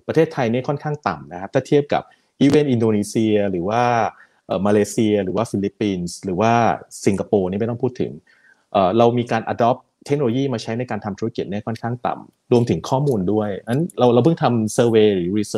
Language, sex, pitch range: Thai, male, 105-135 Hz